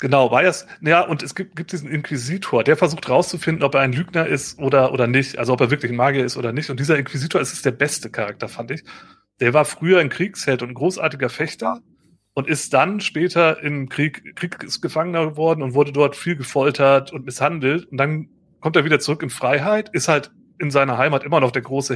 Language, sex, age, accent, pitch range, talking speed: German, male, 30-49, German, 135-160 Hz, 220 wpm